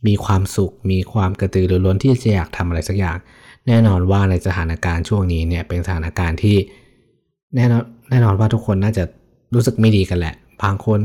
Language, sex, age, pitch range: Thai, male, 20-39, 90-110 Hz